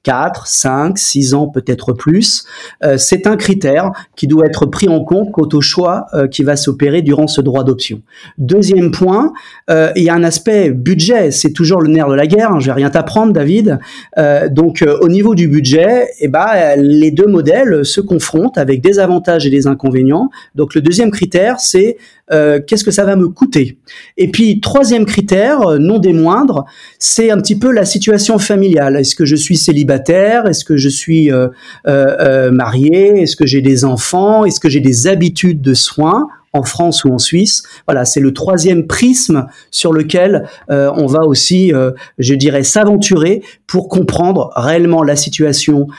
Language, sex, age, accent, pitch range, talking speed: French, male, 40-59, French, 140-190 Hz, 190 wpm